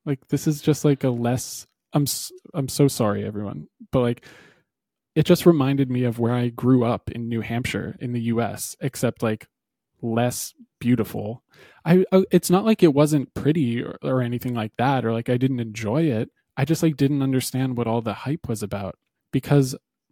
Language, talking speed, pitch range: English, 190 wpm, 115-140 Hz